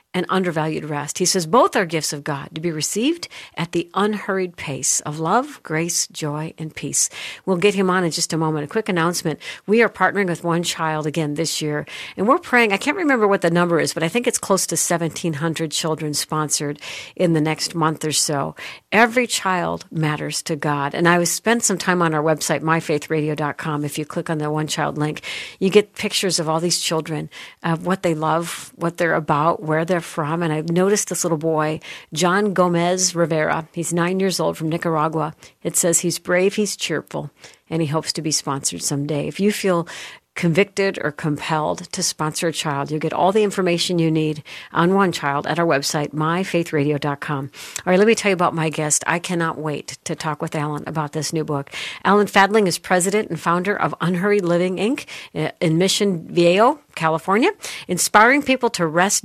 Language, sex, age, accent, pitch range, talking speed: English, female, 60-79, American, 155-190 Hz, 200 wpm